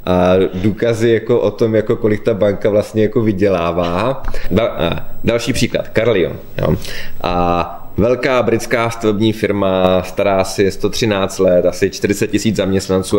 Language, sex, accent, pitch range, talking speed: Czech, male, native, 90-115 Hz, 130 wpm